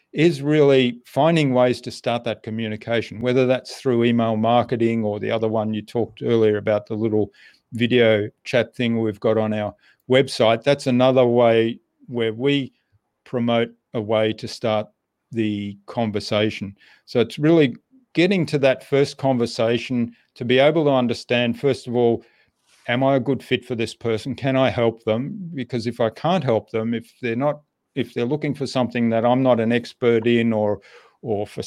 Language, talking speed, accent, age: English, 180 wpm, Australian, 40-59